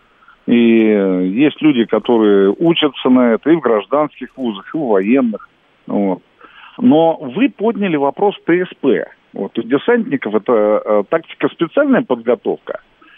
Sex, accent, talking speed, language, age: male, native, 115 wpm, Russian, 50-69